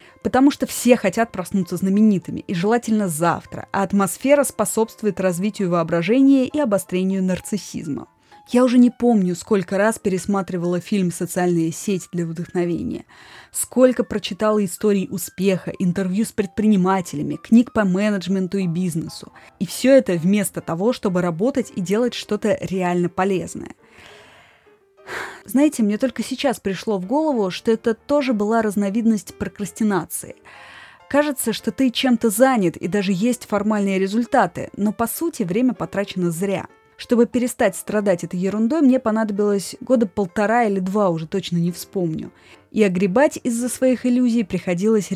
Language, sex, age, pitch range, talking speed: Russian, female, 20-39, 185-240 Hz, 135 wpm